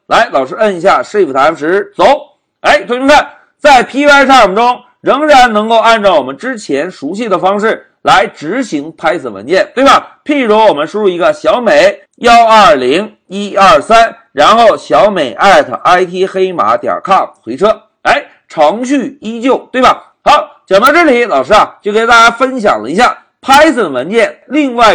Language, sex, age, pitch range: Chinese, male, 50-69, 210-290 Hz